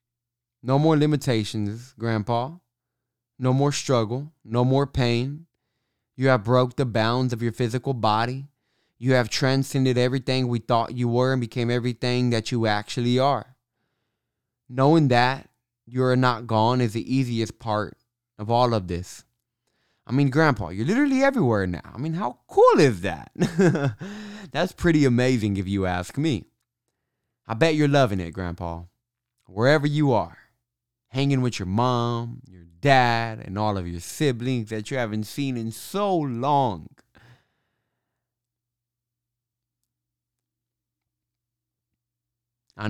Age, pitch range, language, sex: 20-39, 115-135 Hz, English, male